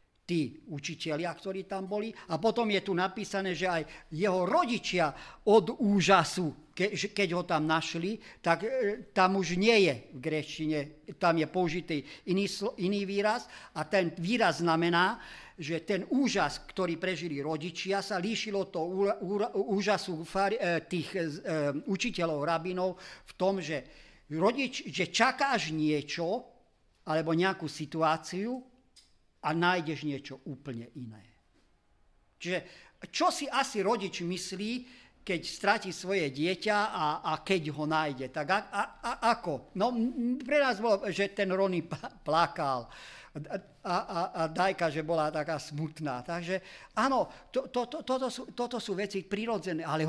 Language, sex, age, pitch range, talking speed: Slovak, male, 50-69, 160-210 Hz, 135 wpm